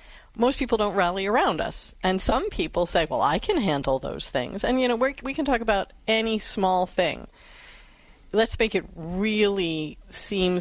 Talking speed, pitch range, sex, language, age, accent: 180 wpm, 170-220 Hz, female, English, 40-59, American